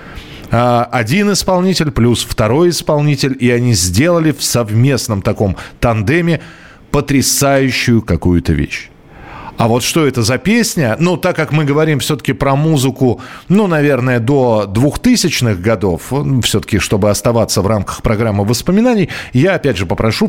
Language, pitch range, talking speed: Russian, 105-145 Hz, 135 wpm